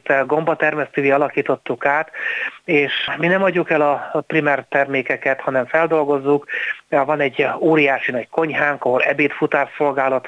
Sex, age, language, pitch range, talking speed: male, 60-79, Hungarian, 135-155 Hz, 130 wpm